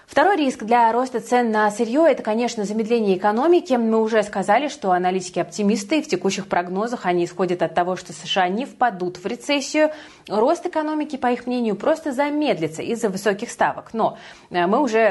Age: 20-39